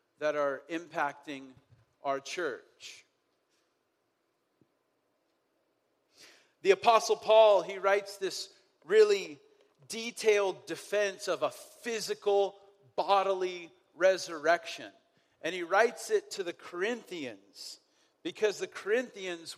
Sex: male